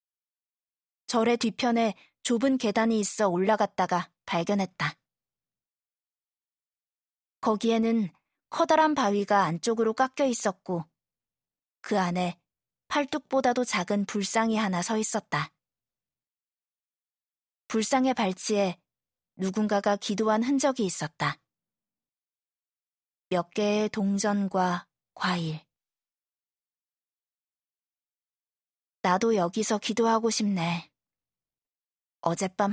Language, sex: Korean, female